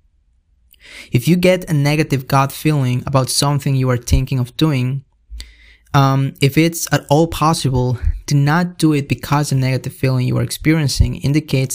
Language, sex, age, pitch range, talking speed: English, male, 20-39, 125-145 Hz, 165 wpm